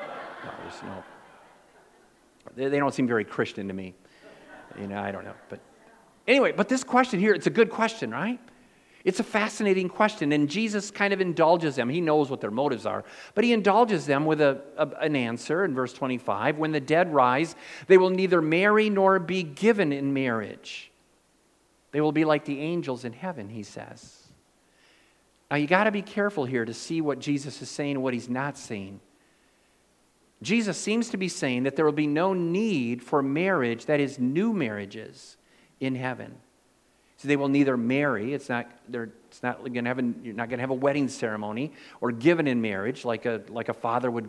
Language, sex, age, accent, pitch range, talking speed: English, male, 50-69, American, 125-185 Hz, 190 wpm